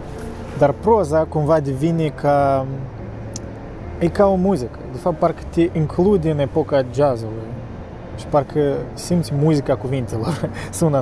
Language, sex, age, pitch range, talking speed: Romanian, male, 20-39, 90-145 Hz, 125 wpm